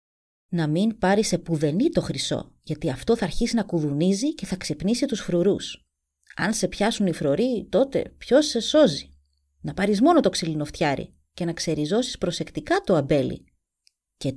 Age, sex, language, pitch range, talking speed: 30-49, female, Greek, 150-225 Hz, 160 wpm